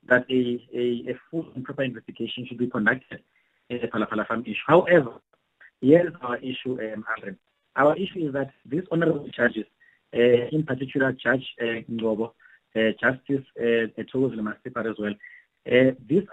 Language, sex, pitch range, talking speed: English, male, 125-155 Hz, 160 wpm